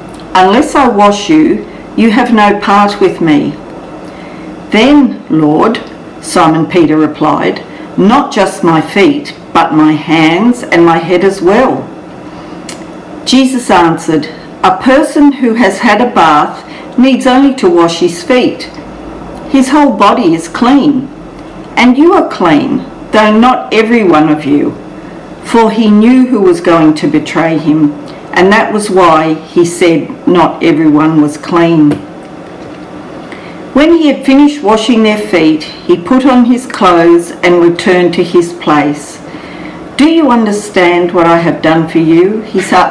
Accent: Australian